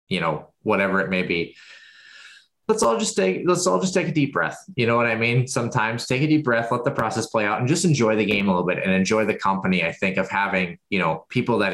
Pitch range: 95-125 Hz